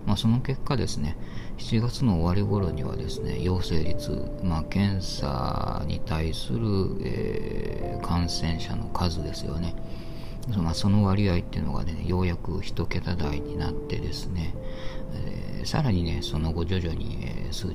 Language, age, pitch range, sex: Japanese, 40-59, 85-105 Hz, male